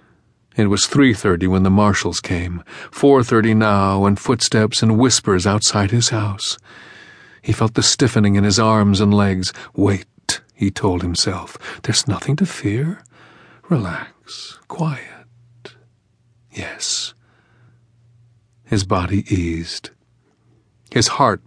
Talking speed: 115 wpm